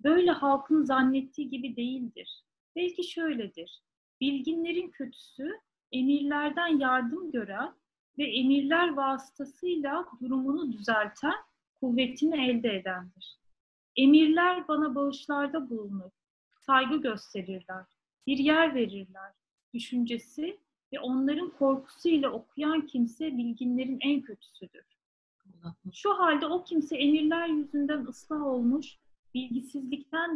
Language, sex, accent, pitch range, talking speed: Turkish, female, native, 235-300 Hz, 95 wpm